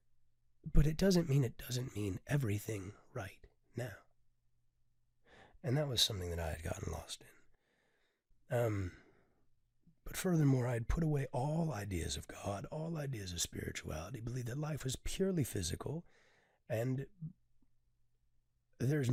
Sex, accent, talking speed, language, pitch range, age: male, American, 135 wpm, English, 100-145 Hz, 30-49